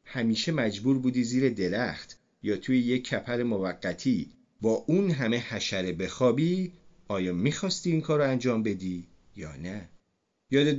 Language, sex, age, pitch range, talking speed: Persian, male, 40-59, 100-145 Hz, 135 wpm